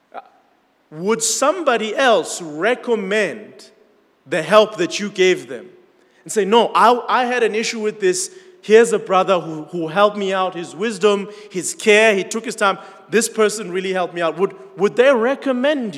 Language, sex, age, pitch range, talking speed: English, male, 30-49, 175-230 Hz, 175 wpm